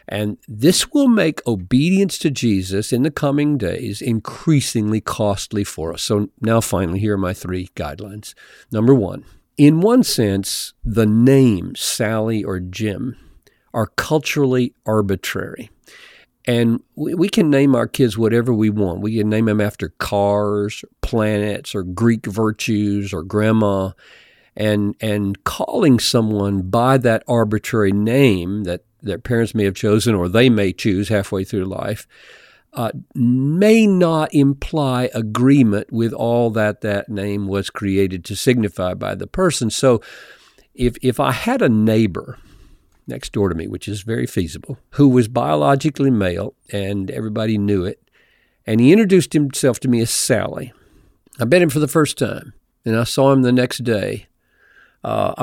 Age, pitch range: 50-69, 100-130 Hz